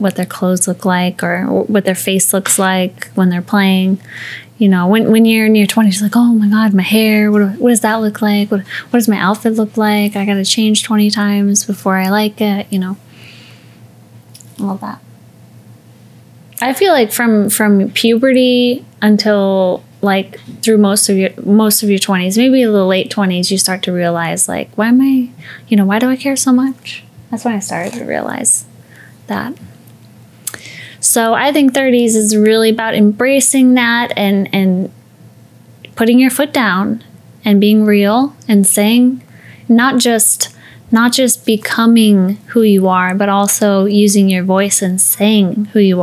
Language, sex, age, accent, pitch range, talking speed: English, female, 10-29, American, 195-225 Hz, 175 wpm